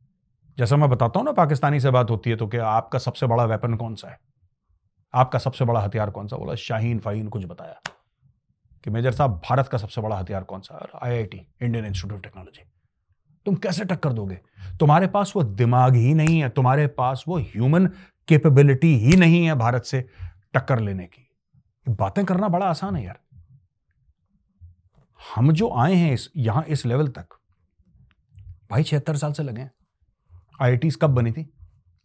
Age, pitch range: 40-59, 110-145 Hz